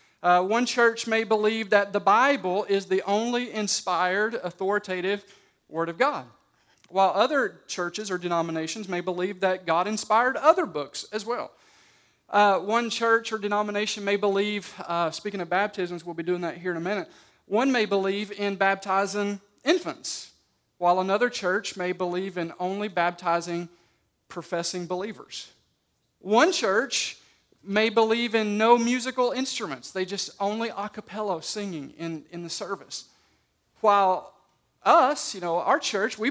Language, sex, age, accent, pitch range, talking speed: English, male, 40-59, American, 185-235 Hz, 150 wpm